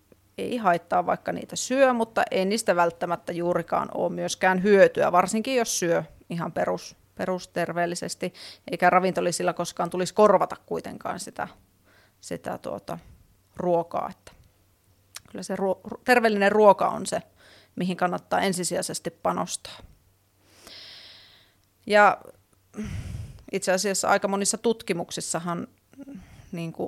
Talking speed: 95 wpm